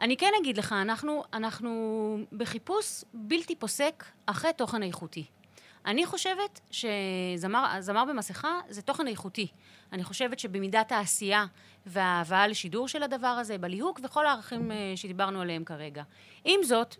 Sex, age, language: female, 30-49, Hebrew